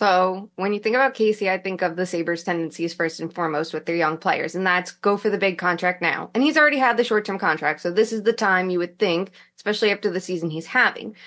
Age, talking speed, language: 20-39, 260 wpm, English